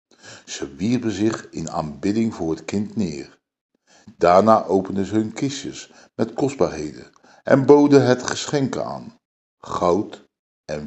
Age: 50-69